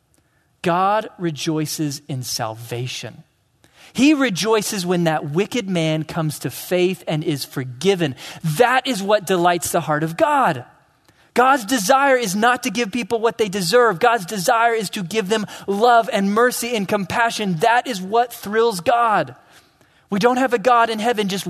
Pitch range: 150-215 Hz